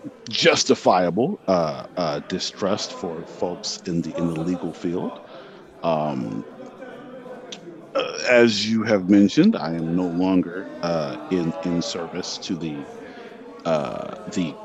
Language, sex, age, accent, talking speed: English, male, 50-69, American, 115 wpm